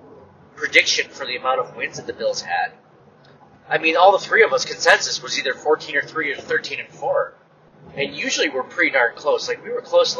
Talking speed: 225 wpm